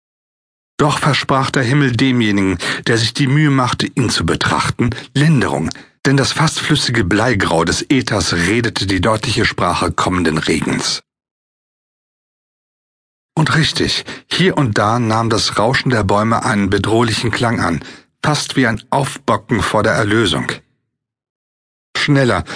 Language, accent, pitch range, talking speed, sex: German, German, 100-135 Hz, 130 wpm, male